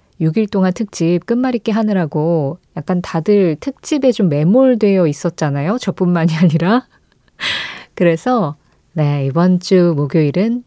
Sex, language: female, Korean